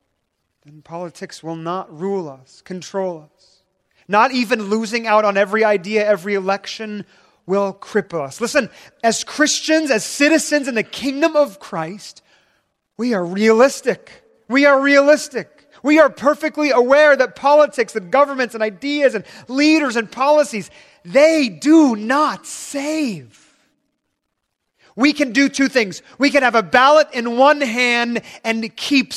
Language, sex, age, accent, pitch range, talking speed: English, male, 30-49, American, 185-245 Hz, 140 wpm